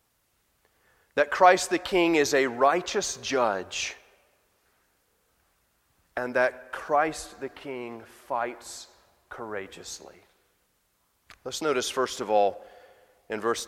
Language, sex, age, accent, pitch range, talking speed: English, male, 30-49, American, 120-145 Hz, 95 wpm